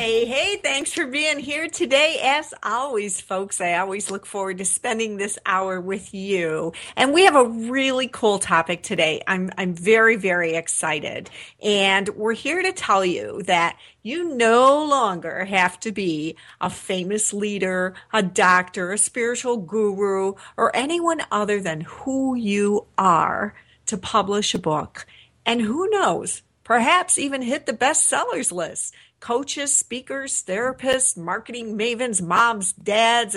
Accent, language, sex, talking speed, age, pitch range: American, English, female, 145 wpm, 50-69, 185-260 Hz